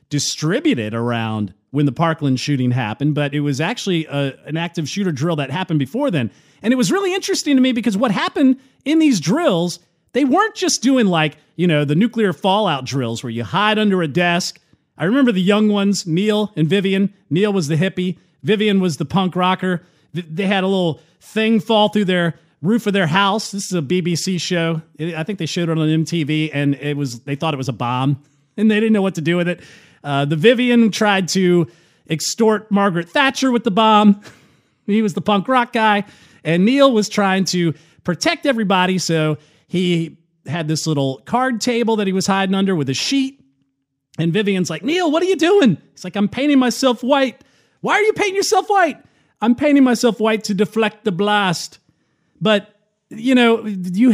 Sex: male